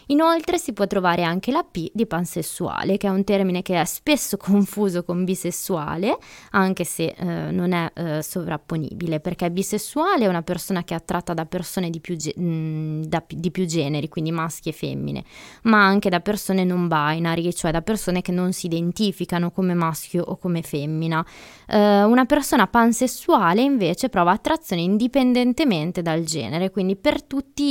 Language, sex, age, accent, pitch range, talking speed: Italian, female, 20-39, native, 170-205 Hz, 155 wpm